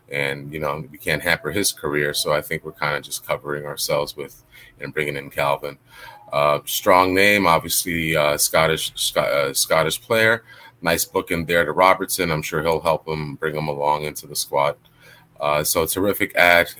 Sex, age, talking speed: male, 30-49, 185 wpm